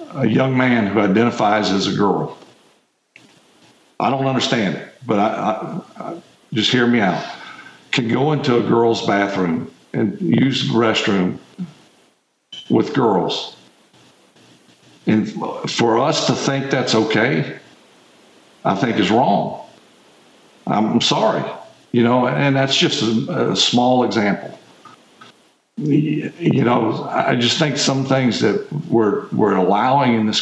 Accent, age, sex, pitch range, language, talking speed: American, 60-79, male, 110-135 Hz, English, 125 wpm